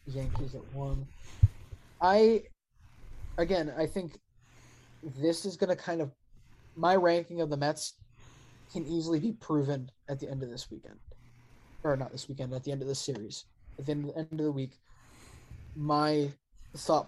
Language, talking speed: English, 170 wpm